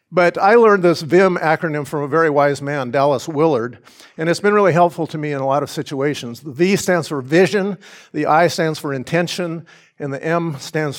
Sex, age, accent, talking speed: male, 50-69, American, 215 wpm